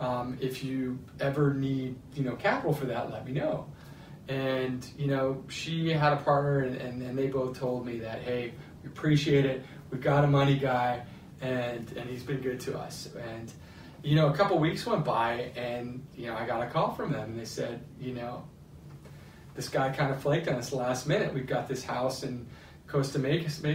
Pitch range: 120-145 Hz